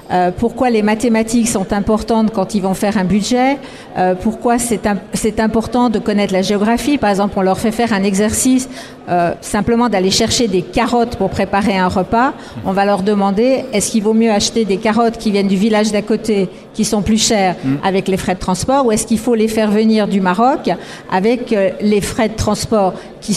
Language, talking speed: French, 195 wpm